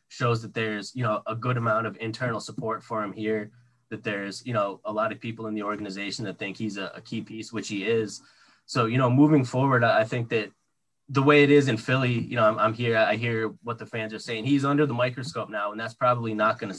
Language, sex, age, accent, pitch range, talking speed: English, male, 10-29, American, 110-125 Hz, 255 wpm